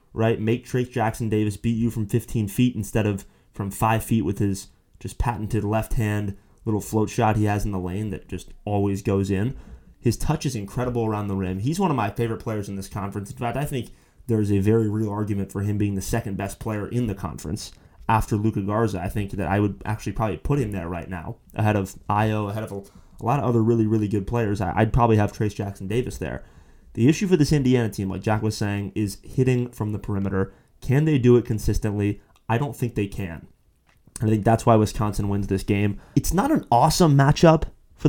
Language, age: English, 20-39